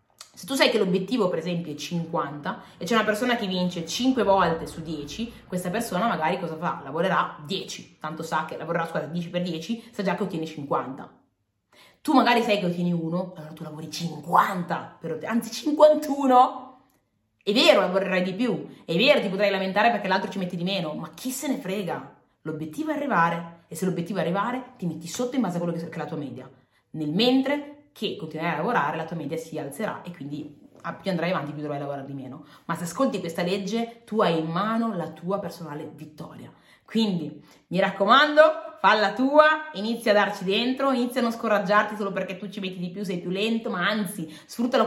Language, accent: Italian, native